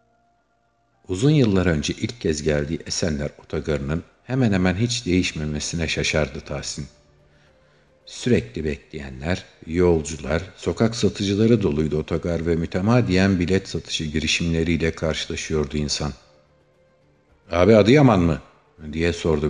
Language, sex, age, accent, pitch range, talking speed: Turkish, male, 50-69, native, 75-95 Hz, 100 wpm